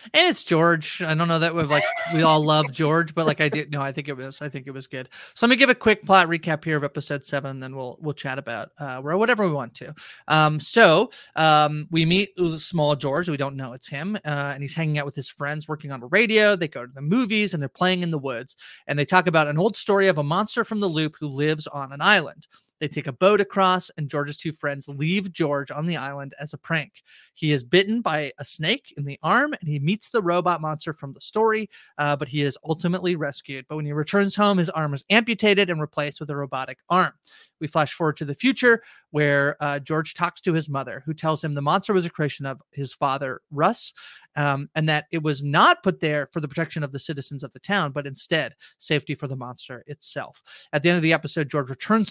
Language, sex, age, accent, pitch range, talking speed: English, male, 30-49, American, 145-185 Hz, 250 wpm